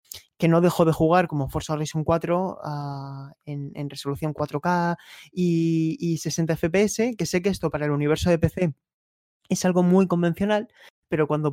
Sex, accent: male, Spanish